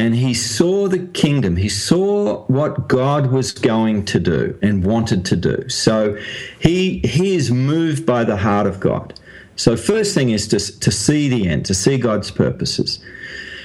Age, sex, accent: 50-69, male, Australian